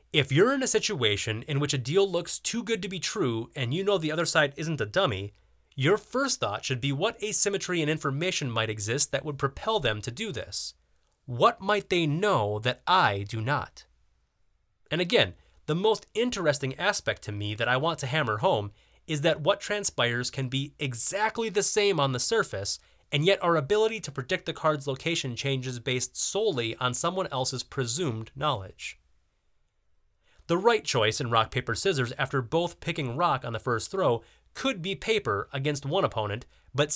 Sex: male